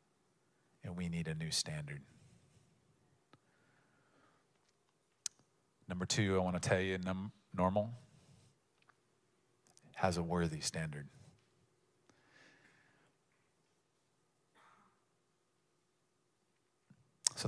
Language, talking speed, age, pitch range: English, 65 wpm, 40-59, 95-125 Hz